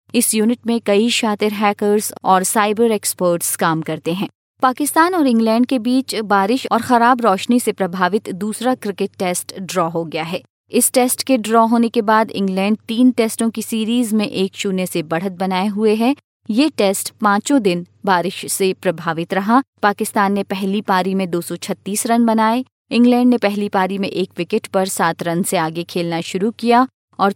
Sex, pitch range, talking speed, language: female, 180-230 Hz, 180 wpm, Hindi